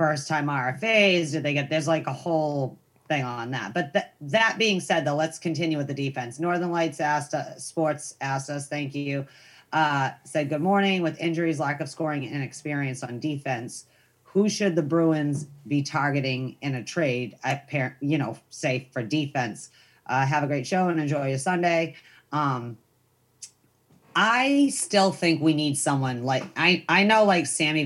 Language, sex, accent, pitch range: English, female, American, 135-165 Hz